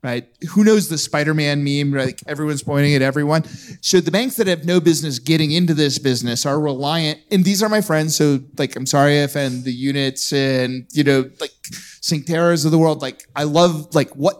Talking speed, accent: 205 wpm, American